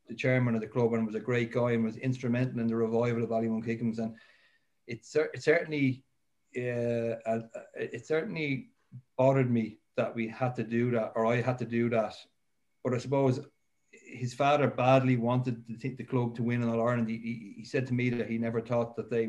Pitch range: 115-125 Hz